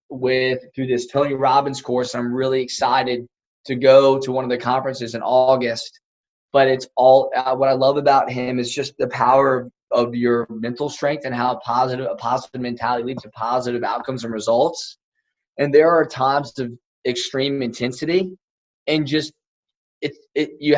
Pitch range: 130-145 Hz